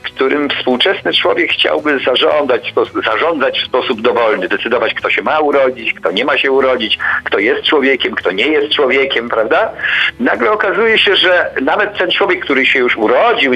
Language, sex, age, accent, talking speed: Polish, male, 50-69, native, 175 wpm